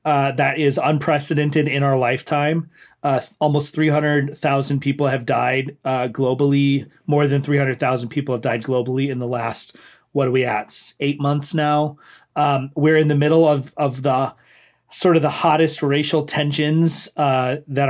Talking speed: 165 wpm